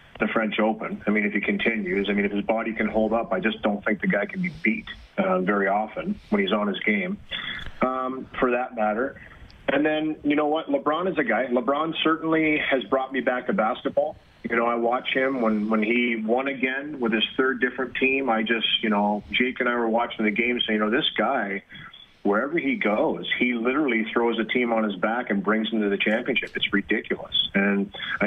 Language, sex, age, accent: English, male, 30-49, American